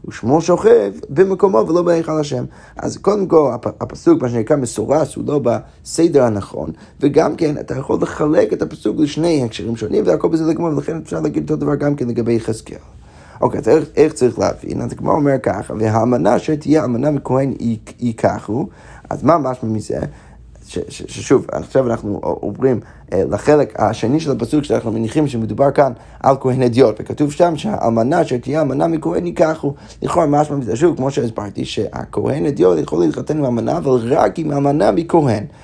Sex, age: male, 30-49